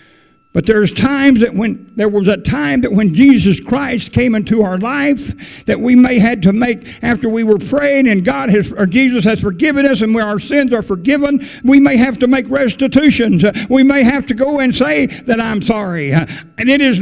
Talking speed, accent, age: 210 wpm, American, 60-79